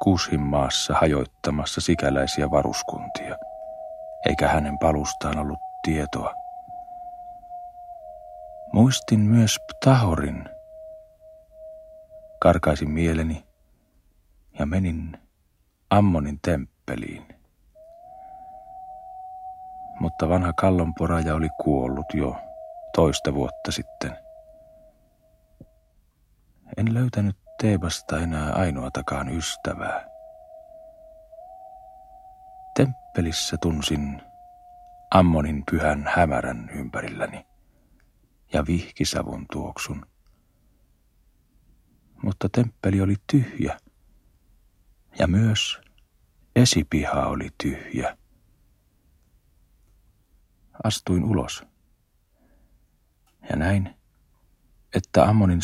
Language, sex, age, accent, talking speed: Finnish, male, 40-59, native, 65 wpm